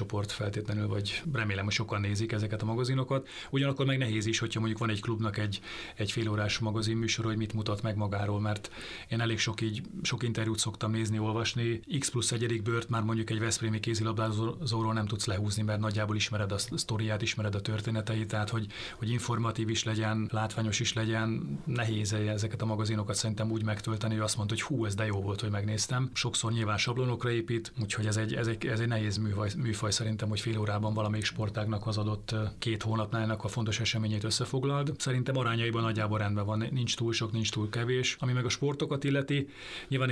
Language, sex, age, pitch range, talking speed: Hungarian, male, 30-49, 105-115 Hz, 195 wpm